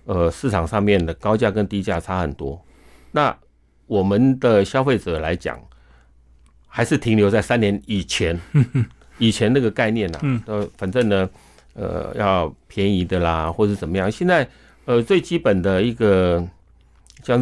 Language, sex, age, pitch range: Chinese, male, 50-69, 85-120 Hz